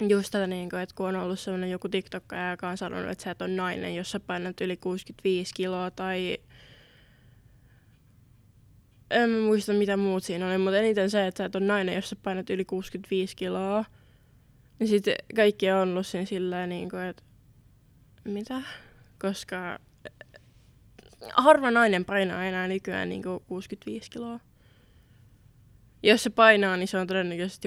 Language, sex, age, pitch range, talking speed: Finnish, female, 20-39, 180-200 Hz, 150 wpm